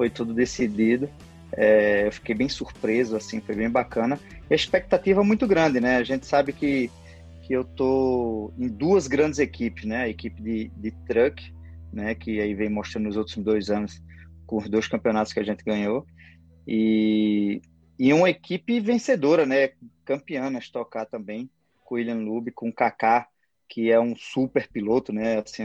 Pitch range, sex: 110-130 Hz, male